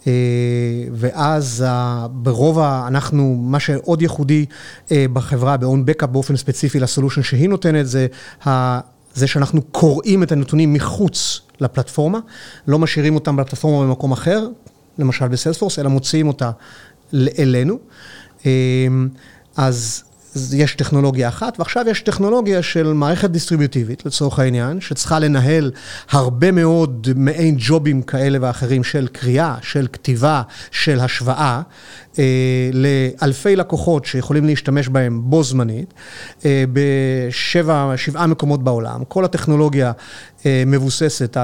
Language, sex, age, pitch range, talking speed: Hebrew, male, 30-49, 130-155 Hz, 115 wpm